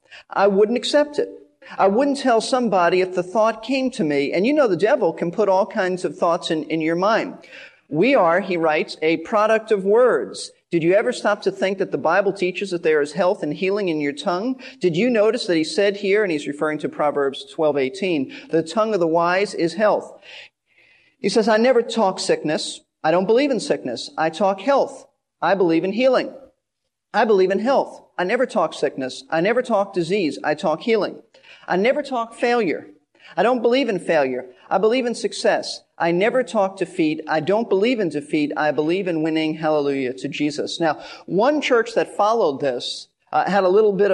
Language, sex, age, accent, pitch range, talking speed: English, male, 40-59, American, 160-225 Hz, 205 wpm